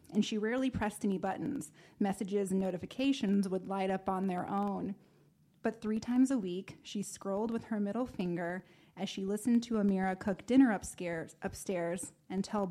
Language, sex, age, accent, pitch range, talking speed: English, female, 20-39, American, 180-215 Hz, 175 wpm